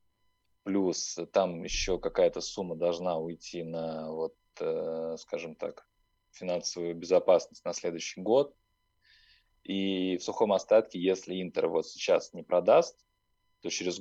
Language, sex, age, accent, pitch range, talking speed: Russian, male, 20-39, native, 85-105 Hz, 120 wpm